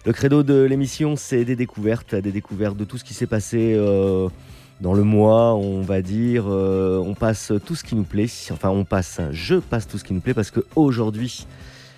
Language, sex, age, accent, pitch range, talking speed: English, male, 30-49, French, 95-115 Hz, 215 wpm